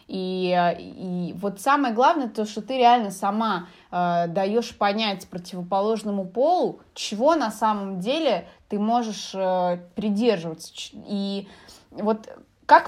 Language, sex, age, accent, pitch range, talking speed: Russian, female, 20-39, native, 190-235 Hz, 120 wpm